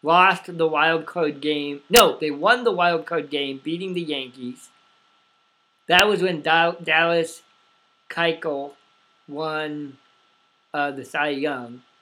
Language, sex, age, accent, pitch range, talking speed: English, male, 50-69, American, 150-190 Hz, 125 wpm